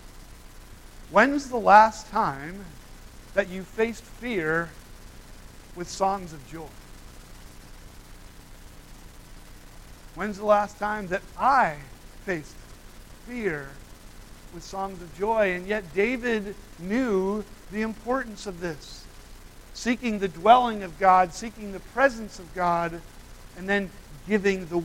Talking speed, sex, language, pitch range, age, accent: 110 wpm, male, English, 165-210 Hz, 50-69, American